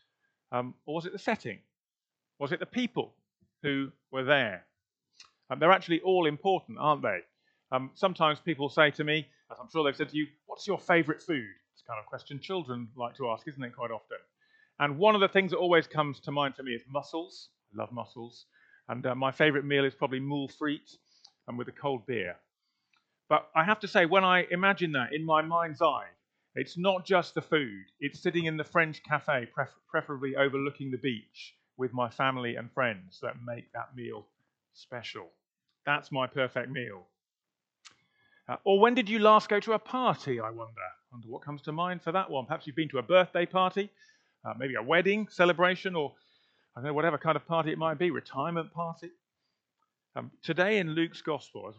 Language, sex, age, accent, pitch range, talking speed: English, male, 40-59, British, 130-175 Hz, 205 wpm